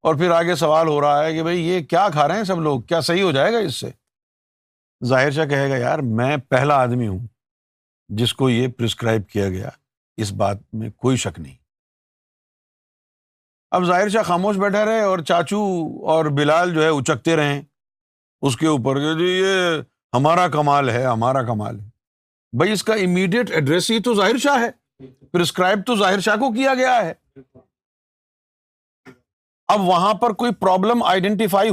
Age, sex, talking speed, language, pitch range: 50-69, male, 175 wpm, Urdu, 135-195 Hz